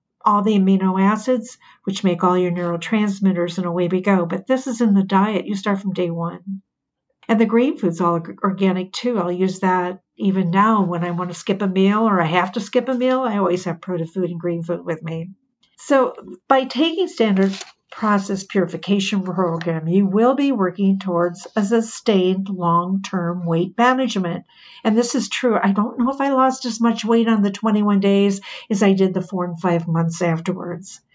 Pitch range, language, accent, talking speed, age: 180-225 Hz, English, American, 195 wpm, 50-69